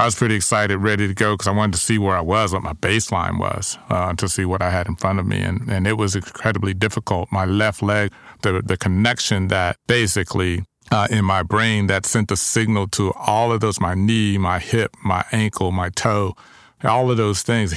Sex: male